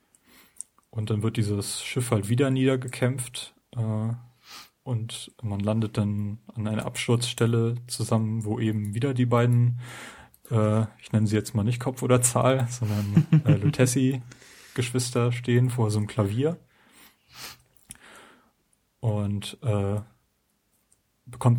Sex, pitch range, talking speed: male, 110-125 Hz, 120 wpm